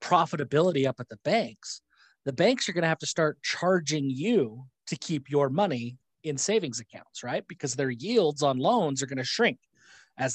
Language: English